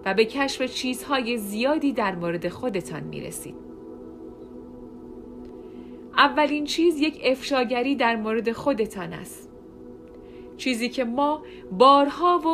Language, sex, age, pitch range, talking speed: Persian, female, 40-59, 190-270 Hz, 105 wpm